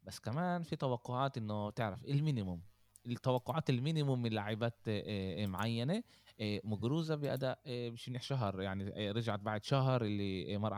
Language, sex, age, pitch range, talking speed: Arabic, male, 20-39, 95-115 Hz, 135 wpm